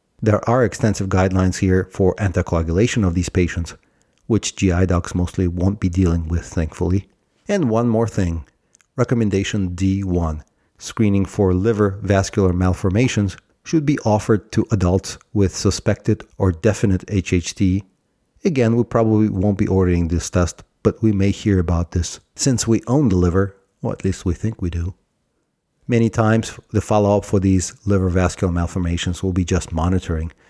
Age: 40-59